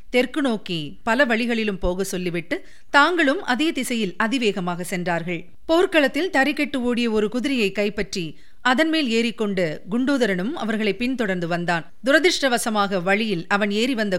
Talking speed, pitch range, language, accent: 125 wpm, 195-275 Hz, Tamil, native